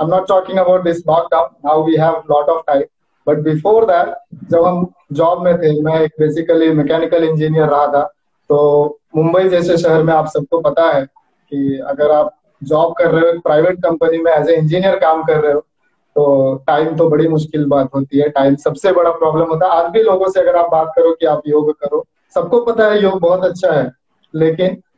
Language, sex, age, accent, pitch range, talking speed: Hindi, male, 20-39, native, 155-190 Hz, 170 wpm